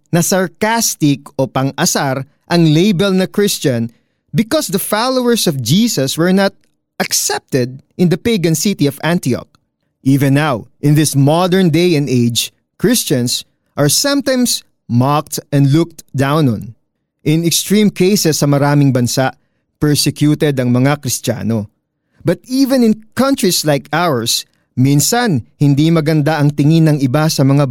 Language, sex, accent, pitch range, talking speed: Filipino, male, native, 135-195 Hz, 135 wpm